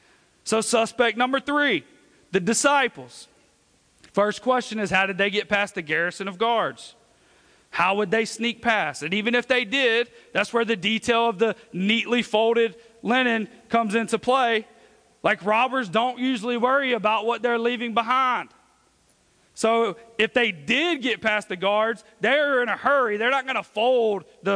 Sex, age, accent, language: male, 40-59, American, English